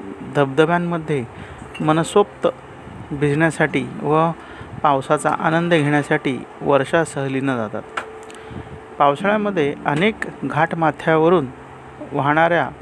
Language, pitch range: Marathi, 140-165 Hz